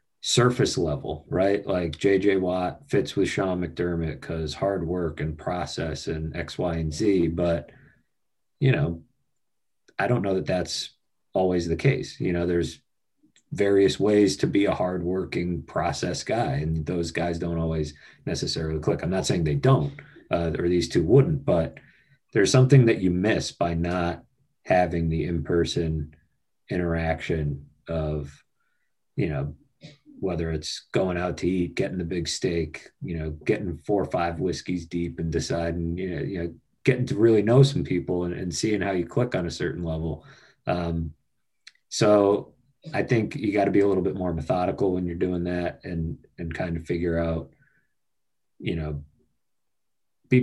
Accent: American